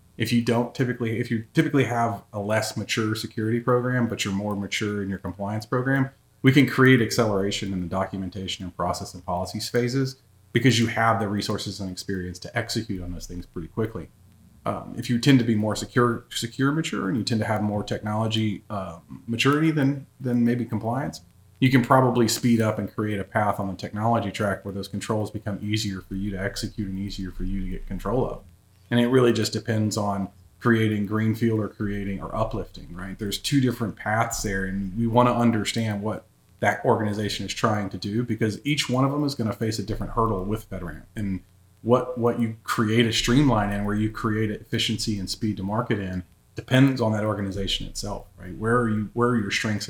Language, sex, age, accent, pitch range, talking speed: English, male, 30-49, American, 100-120 Hz, 210 wpm